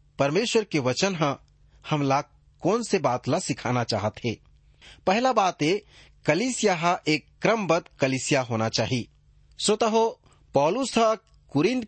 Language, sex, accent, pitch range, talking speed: English, male, Indian, 135-195 Hz, 120 wpm